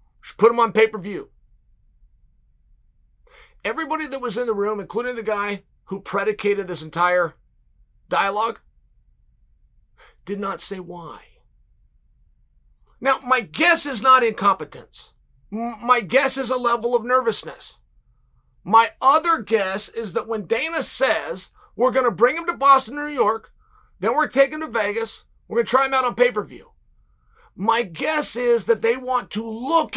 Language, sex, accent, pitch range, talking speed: English, male, American, 200-265 Hz, 150 wpm